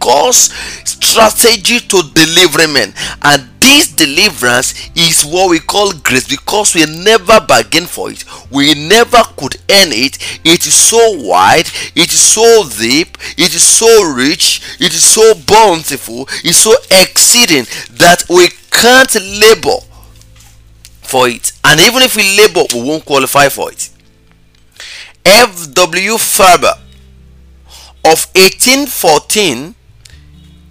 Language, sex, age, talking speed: English, male, 30-49, 125 wpm